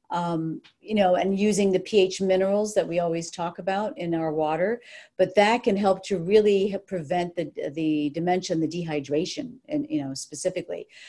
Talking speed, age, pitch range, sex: 180 wpm, 40-59, 170-205 Hz, female